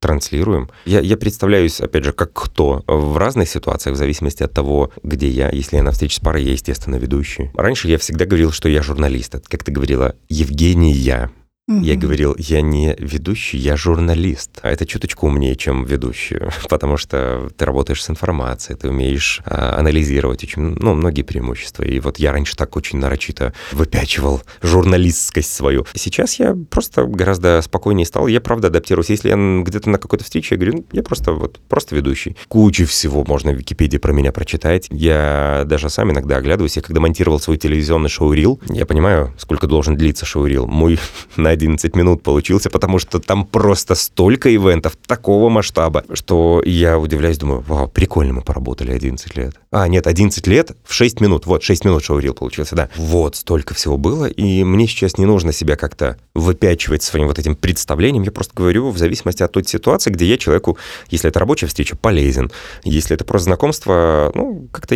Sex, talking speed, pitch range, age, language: male, 180 wpm, 70-90 Hz, 30-49, Russian